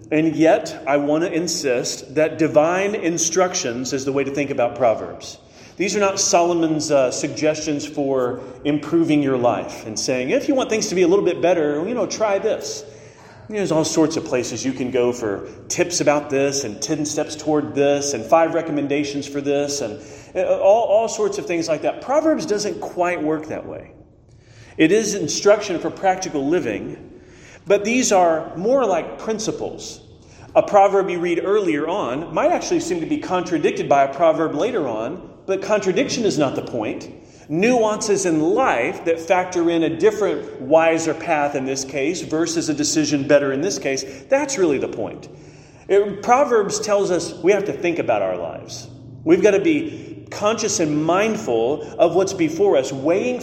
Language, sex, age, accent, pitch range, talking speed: English, male, 40-59, American, 145-210 Hz, 180 wpm